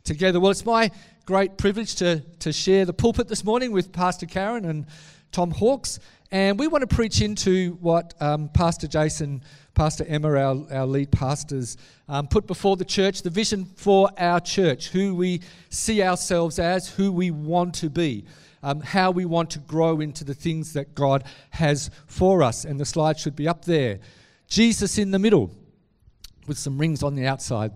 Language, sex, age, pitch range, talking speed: English, male, 50-69, 140-180 Hz, 185 wpm